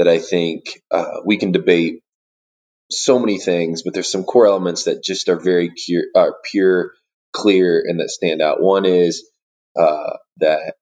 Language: English